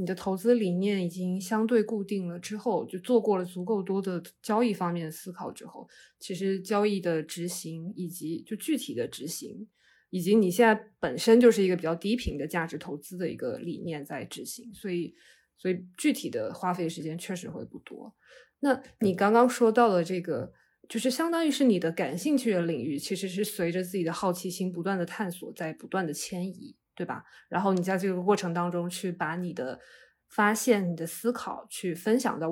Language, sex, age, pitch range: Chinese, female, 20-39, 175-220 Hz